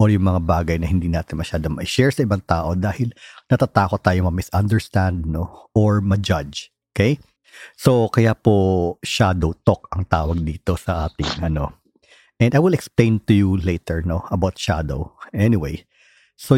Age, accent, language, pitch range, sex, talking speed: 50-69, native, Filipino, 90-120 Hz, male, 155 wpm